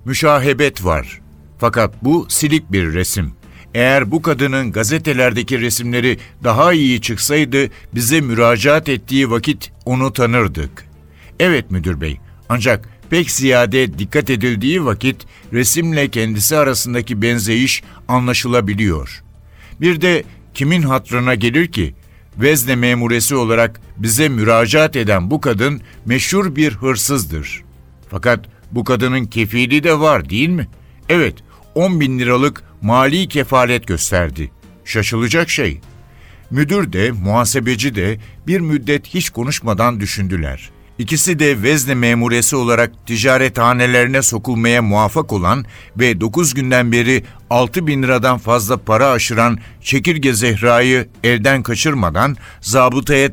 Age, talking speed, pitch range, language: 60-79, 115 wpm, 105-135 Hz, Turkish